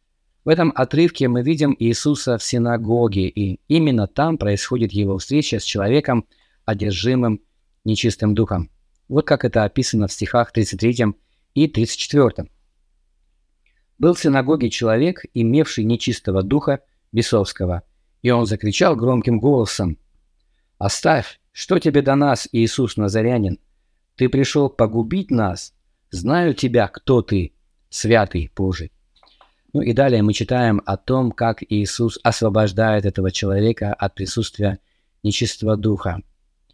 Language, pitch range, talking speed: Russian, 100-130 Hz, 120 wpm